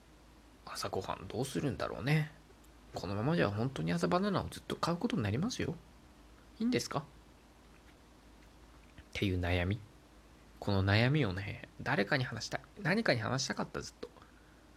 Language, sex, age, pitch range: Japanese, male, 20-39, 95-140 Hz